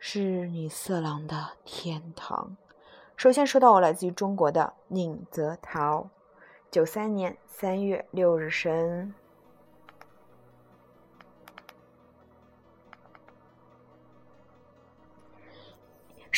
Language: Chinese